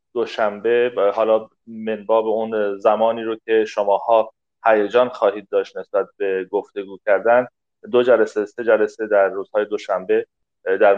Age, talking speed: 30-49, 135 wpm